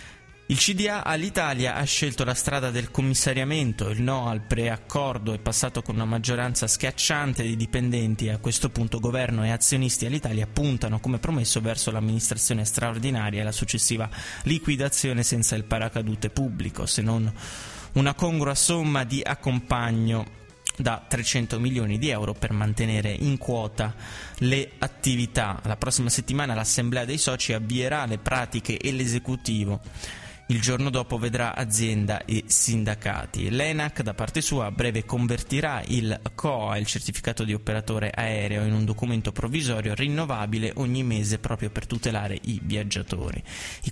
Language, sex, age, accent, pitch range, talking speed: Italian, male, 20-39, native, 110-130 Hz, 145 wpm